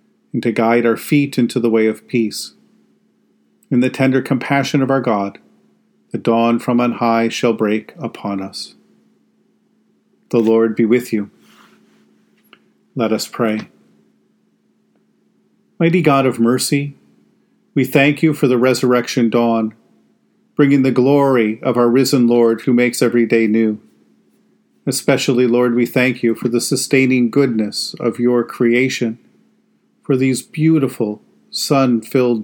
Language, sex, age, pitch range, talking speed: English, male, 40-59, 115-140 Hz, 135 wpm